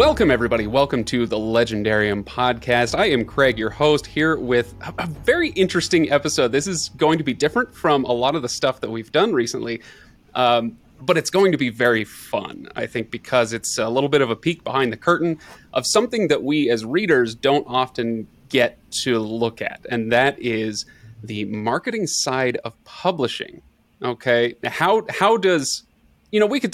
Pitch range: 115-150 Hz